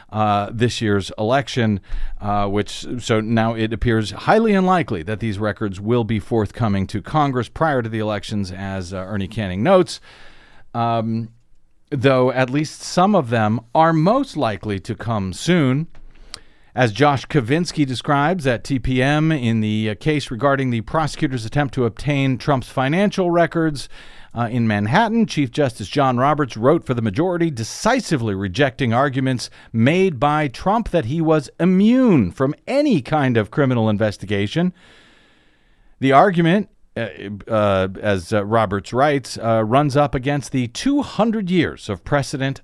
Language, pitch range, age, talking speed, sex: English, 110-155 Hz, 40-59, 145 wpm, male